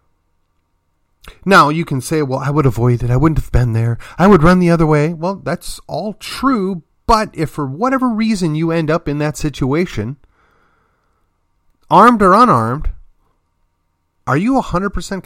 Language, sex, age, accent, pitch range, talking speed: English, male, 40-59, American, 115-165 Hz, 160 wpm